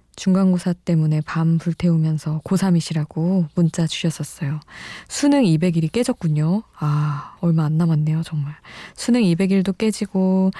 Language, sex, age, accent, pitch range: Korean, female, 20-39, native, 160-200 Hz